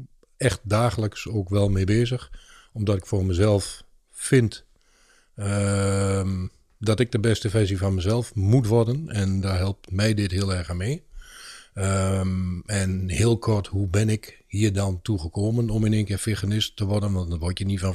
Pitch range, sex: 95-110 Hz, male